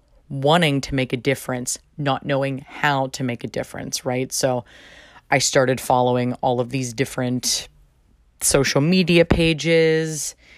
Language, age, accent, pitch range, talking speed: English, 20-39, American, 125-150 Hz, 135 wpm